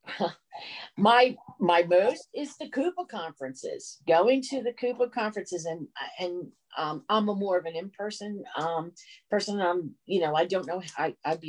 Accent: American